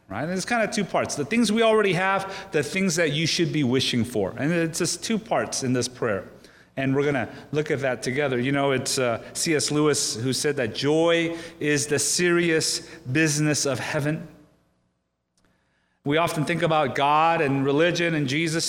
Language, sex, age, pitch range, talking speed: English, male, 30-49, 135-175 Hz, 190 wpm